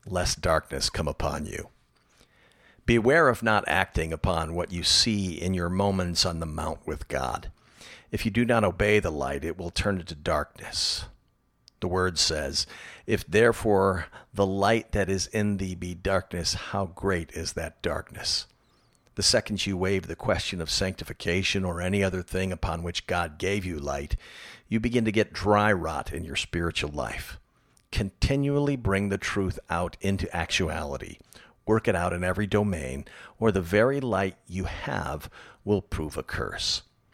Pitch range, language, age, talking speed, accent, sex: 85-105 Hz, English, 50-69, 165 wpm, American, male